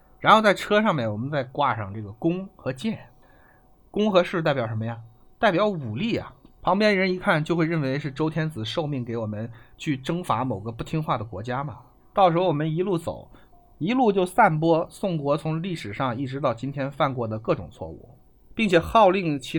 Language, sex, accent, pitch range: Chinese, male, native, 120-175 Hz